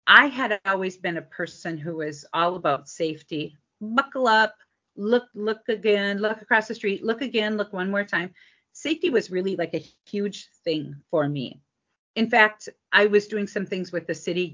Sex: female